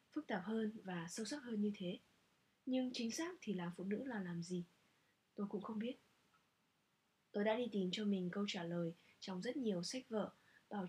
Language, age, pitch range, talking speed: Vietnamese, 20-39, 185-235 Hz, 205 wpm